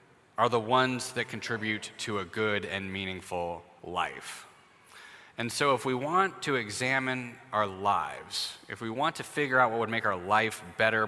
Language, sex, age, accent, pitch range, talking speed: English, male, 30-49, American, 110-155 Hz, 175 wpm